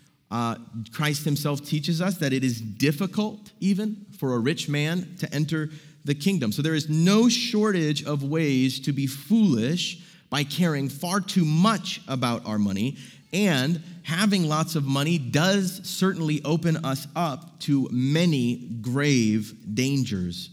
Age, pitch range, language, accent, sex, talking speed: 30-49, 130-175 Hz, English, American, male, 145 wpm